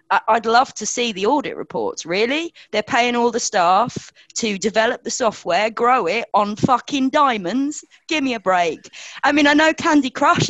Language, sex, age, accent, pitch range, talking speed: English, female, 20-39, British, 170-235 Hz, 185 wpm